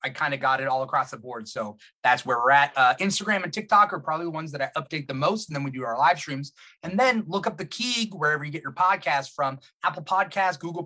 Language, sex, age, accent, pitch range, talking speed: English, male, 30-49, American, 135-185 Hz, 270 wpm